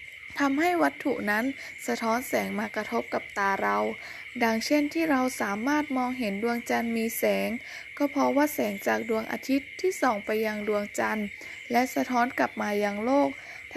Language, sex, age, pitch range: Thai, female, 10-29, 220-295 Hz